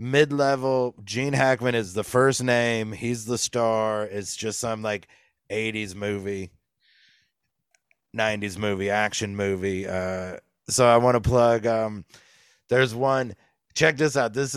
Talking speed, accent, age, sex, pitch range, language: 135 wpm, American, 30-49, male, 100-125 Hz, English